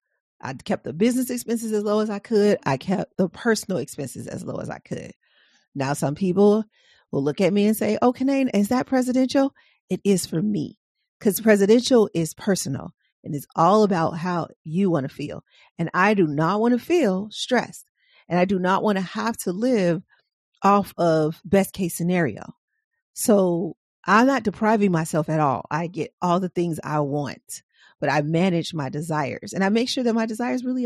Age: 40-59